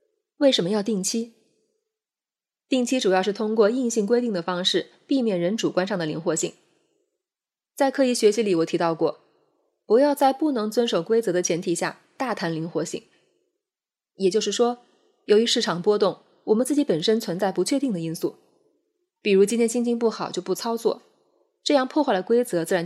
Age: 20-39